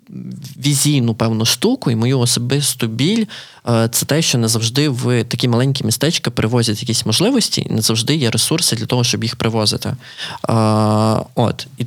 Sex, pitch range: male, 115-130 Hz